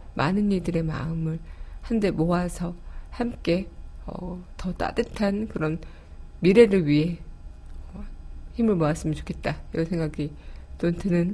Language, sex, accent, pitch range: Korean, female, native, 165-215 Hz